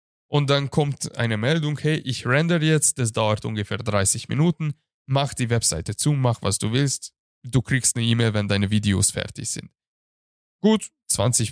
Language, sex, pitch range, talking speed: German, male, 110-145 Hz, 170 wpm